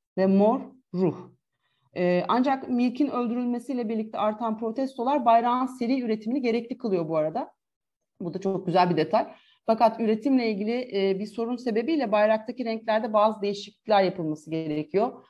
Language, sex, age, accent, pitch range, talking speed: Turkish, female, 40-59, native, 195-245 Hz, 135 wpm